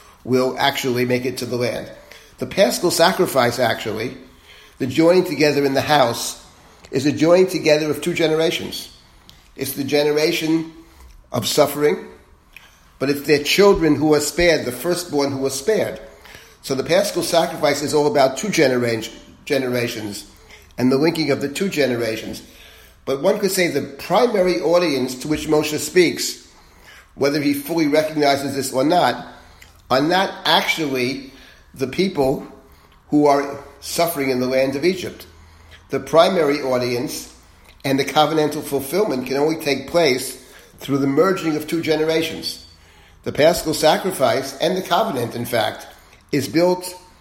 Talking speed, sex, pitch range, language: 145 wpm, male, 130-165 Hz, English